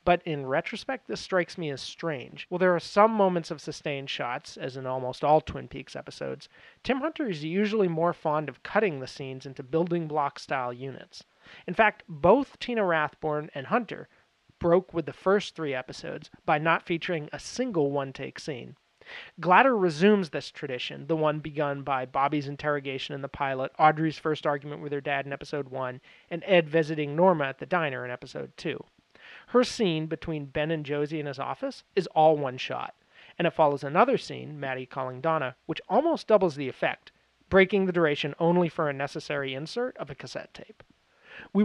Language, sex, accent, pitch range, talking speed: English, male, American, 145-190 Hz, 185 wpm